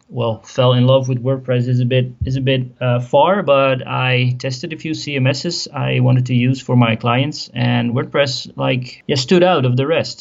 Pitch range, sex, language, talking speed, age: 125-155 Hz, male, English, 210 wpm, 30-49